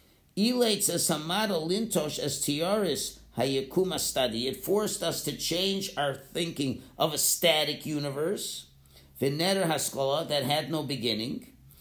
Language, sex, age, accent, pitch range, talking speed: English, male, 50-69, American, 140-190 Hz, 80 wpm